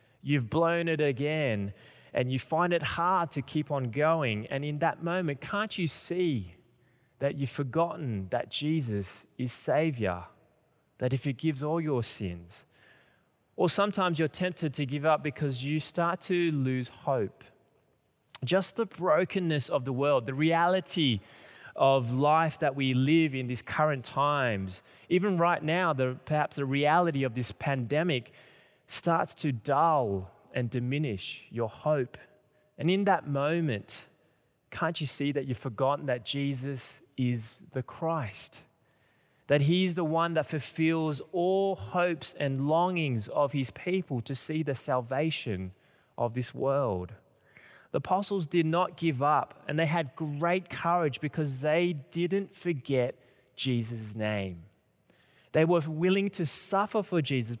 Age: 20-39